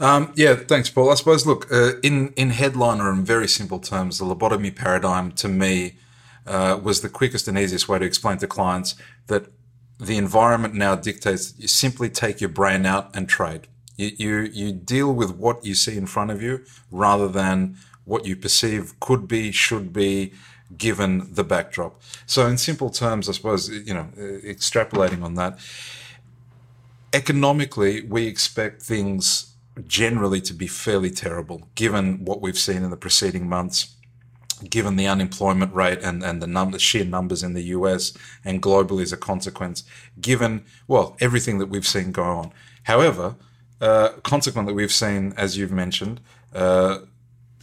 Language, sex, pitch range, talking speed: English, male, 95-120 Hz, 165 wpm